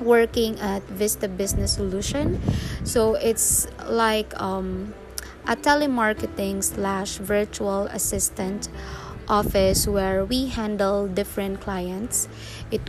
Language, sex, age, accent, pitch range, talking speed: English, female, 20-39, Filipino, 190-225 Hz, 100 wpm